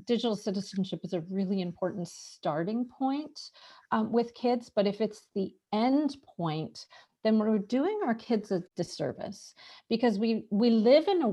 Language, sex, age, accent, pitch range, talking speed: English, female, 40-59, American, 180-225 Hz, 160 wpm